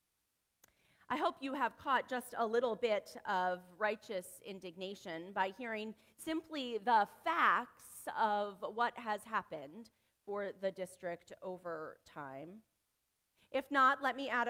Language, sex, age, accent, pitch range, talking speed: English, female, 30-49, American, 180-245 Hz, 130 wpm